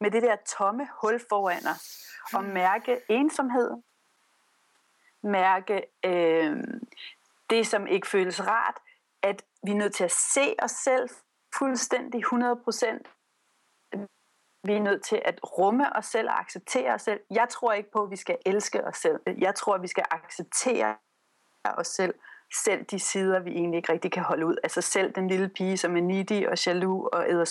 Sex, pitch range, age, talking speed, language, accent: female, 185-245 Hz, 40-59, 175 wpm, Danish, native